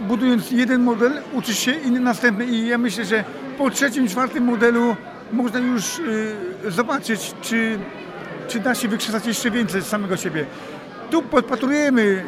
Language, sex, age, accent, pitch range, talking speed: Polish, male, 50-69, native, 220-250 Hz, 140 wpm